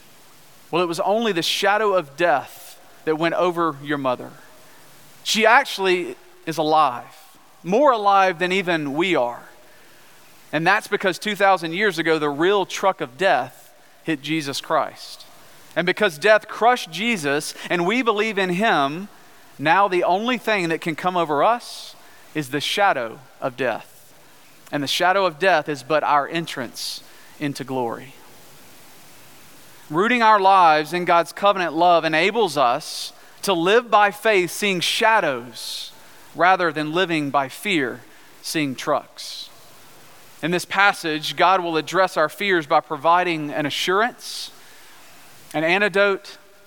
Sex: male